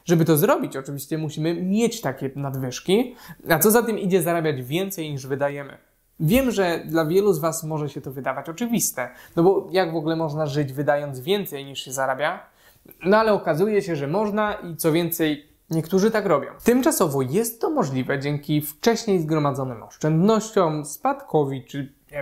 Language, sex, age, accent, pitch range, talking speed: Polish, male, 20-39, native, 150-210 Hz, 170 wpm